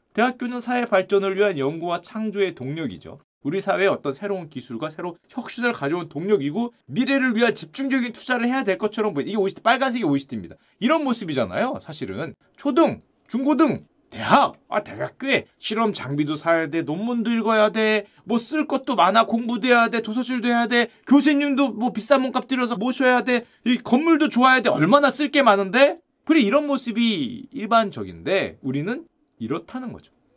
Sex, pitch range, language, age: male, 195-275 Hz, Korean, 30-49